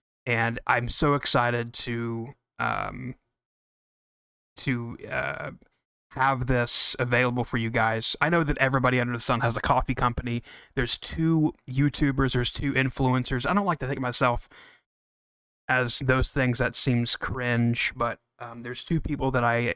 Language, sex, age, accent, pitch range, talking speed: English, male, 20-39, American, 115-135 Hz, 155 wpm